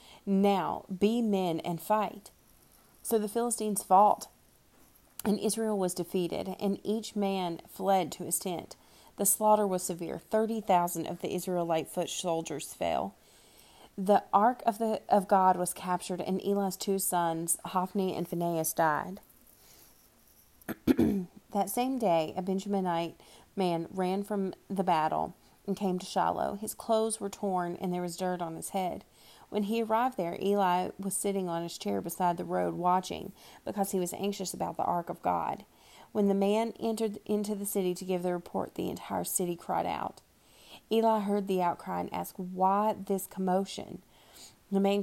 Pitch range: 180-205 Hz